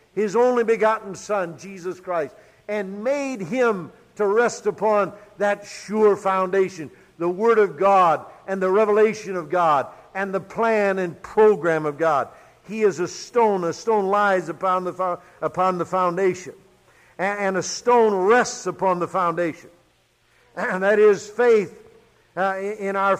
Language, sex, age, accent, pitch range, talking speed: English, male, 60-79, American, 185-230 Hz, 155 wpm